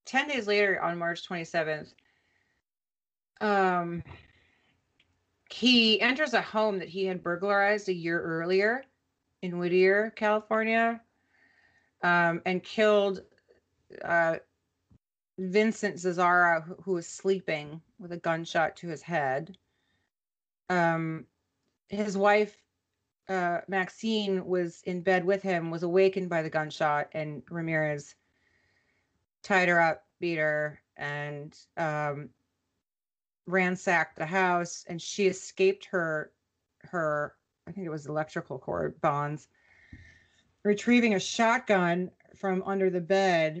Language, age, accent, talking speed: English, 30-49, American, 115 wpm